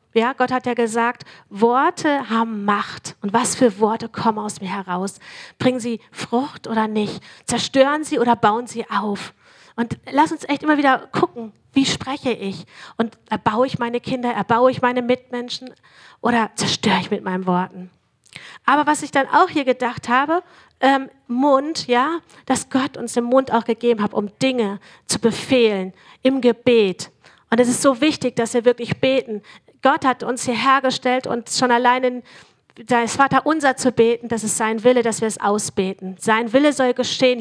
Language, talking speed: German, 180 wpm